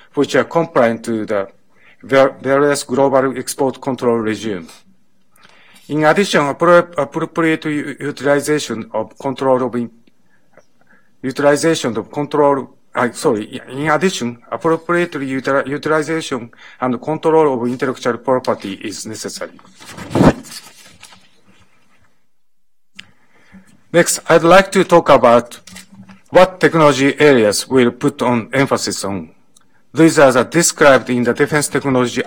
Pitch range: 125-160 Hz